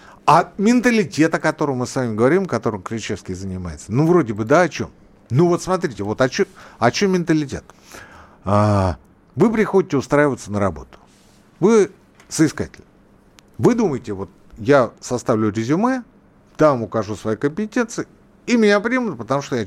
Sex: male